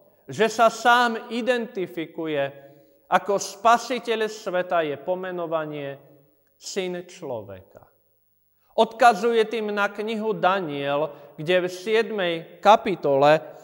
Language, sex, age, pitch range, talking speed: Slovak, male, 40-59, 160-220 Hz, 90 wpm